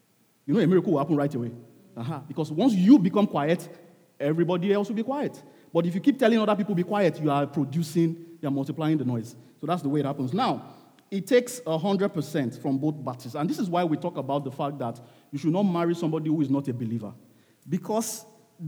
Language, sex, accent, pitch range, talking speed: English, male, Nigerian, 145-190 Hz, 225 wpm